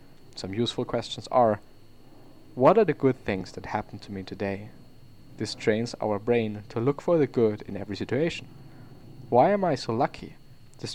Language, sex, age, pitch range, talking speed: English, male, 20-39, 105-135 Hz, 175 wpm